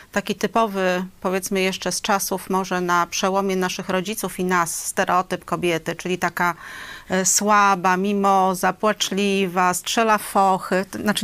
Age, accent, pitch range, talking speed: 40-59, native, 170-210 Hz, 130 wpm